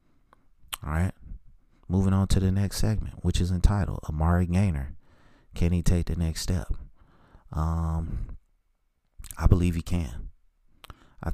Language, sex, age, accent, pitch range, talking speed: English, male, 30-49, American, 75-85 Hz, 125 wpm